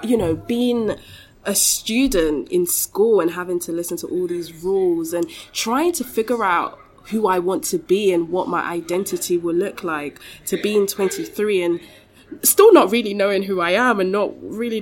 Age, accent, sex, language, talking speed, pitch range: 20-39, British, female, English, 185 wpm, 170-220 Hz